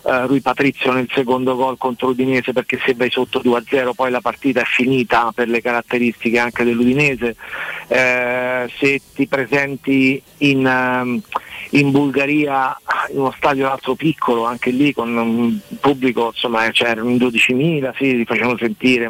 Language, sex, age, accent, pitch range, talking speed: Italian, male, 40-59, native, 120-135 Hz, 160 wpm